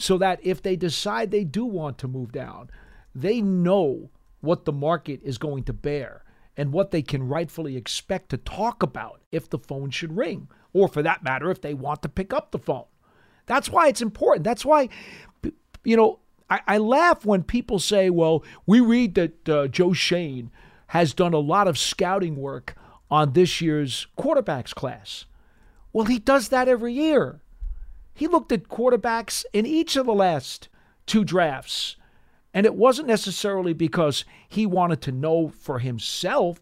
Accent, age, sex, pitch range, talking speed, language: American, 50-69, male, 150-210 Hz, 175 wpm, English